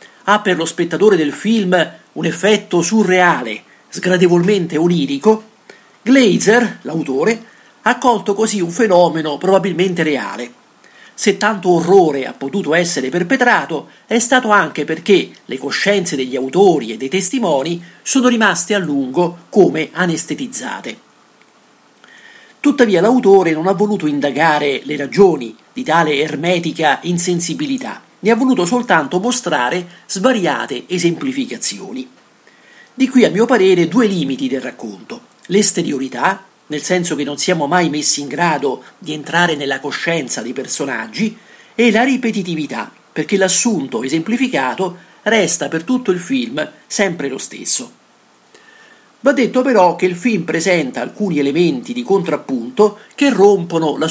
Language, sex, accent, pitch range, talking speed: Italian, male, native, 160-225 Hz, 130 wpm